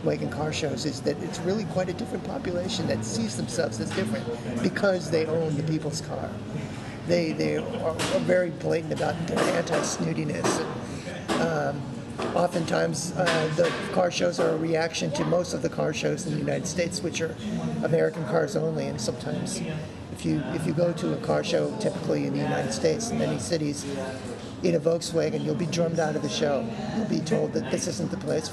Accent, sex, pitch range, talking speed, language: American, male, 120-175 Hz, 190 wpm, English